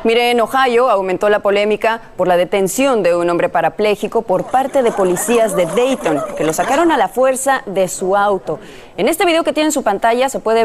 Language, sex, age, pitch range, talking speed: Spanish, female, 30-49, 185-245 Hz, 215 wpm